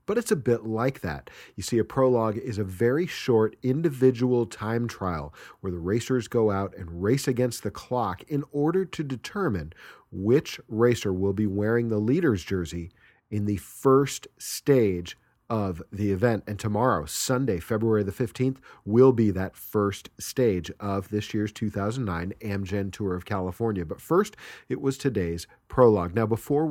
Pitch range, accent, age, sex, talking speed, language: 100-130 Hz, American, 40-59, male, 165 wpm, English